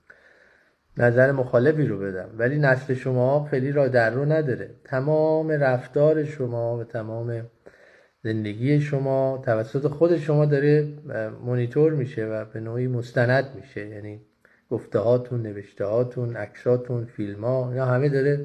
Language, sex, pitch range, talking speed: Persian, male, 115-140 Hz, 125 wpm